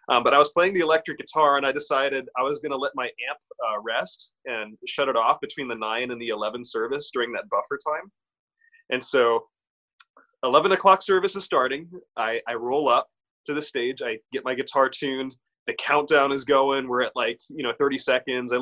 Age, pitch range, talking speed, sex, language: 20-39, 130-180 Hz, 215 wpm, male, English